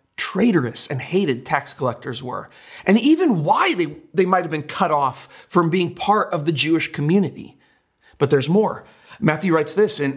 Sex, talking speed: male, 175 wpm